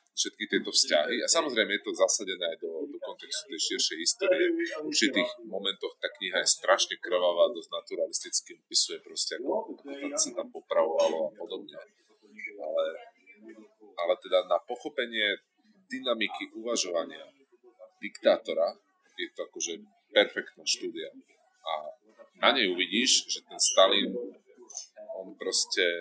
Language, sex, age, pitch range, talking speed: Slovak, male, 30-49, 315-420 Hz, 125 wpm